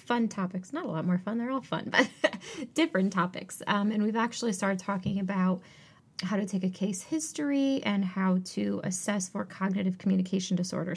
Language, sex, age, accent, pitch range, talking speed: English, female, 30-49, American, 185-225 Hz, 185 wpm